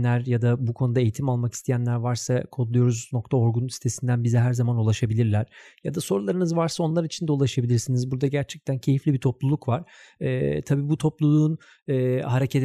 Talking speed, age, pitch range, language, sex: 160 wpm, 40-59, 115-140 Hz, Turkish, male